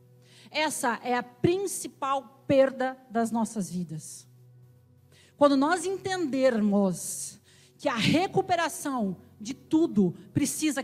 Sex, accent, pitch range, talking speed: female, Brazilian, 205-280 Hz, 95 wpm